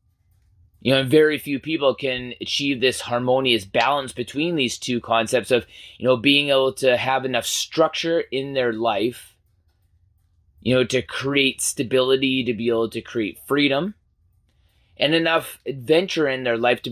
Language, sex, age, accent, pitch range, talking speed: English, male, 30-49, American, 105-145 Hz, 155 wpm